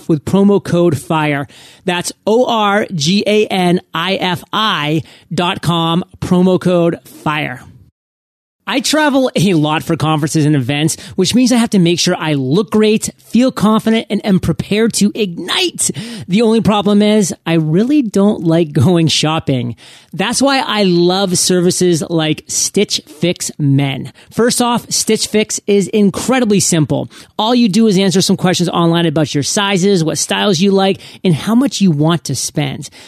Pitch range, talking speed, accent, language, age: 165-215 Hz, 150 wpm, American, English, 30-49